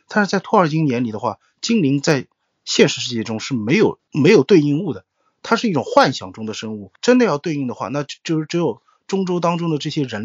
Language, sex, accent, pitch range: Chinese, male, native, 120-175 Hz